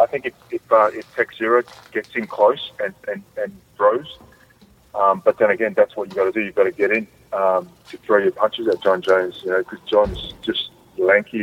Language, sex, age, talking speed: English, male, 30-49, 230 wpm